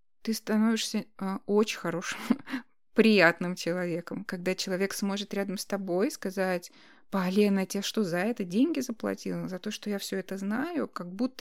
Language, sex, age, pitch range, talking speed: Russian, female, 20-39, 180-220 Hz, 165 wpm